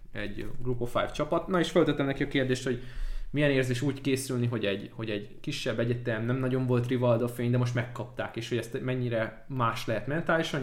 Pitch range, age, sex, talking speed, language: 115-135 Hz, 20-39, male, 210 wpm, Hungarian